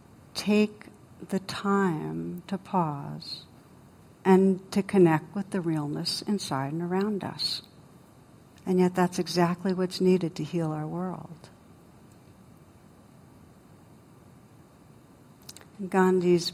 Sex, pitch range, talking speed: female, 165-185 Hz, 95 wpm